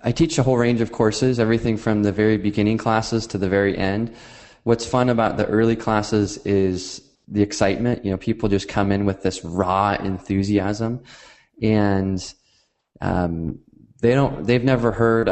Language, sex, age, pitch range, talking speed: English, male, 20-39, 95-115 Hz, 165 wpm